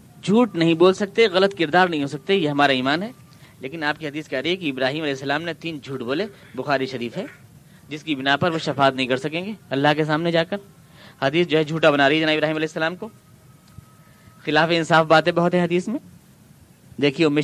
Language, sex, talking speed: Urdu, male, 225 wpm